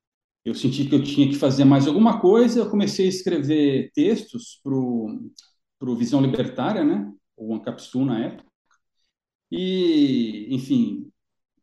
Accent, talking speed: Brazilian, 140 wpm